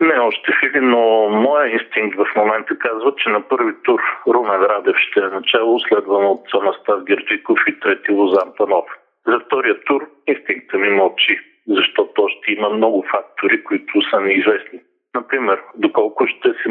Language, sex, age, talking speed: Bulgarian, male, 40-59, 160 wpm